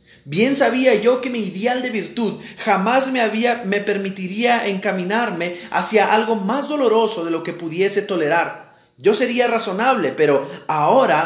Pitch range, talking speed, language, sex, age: 185-235 Hz, 150 wpm, Spanish, male, 30-49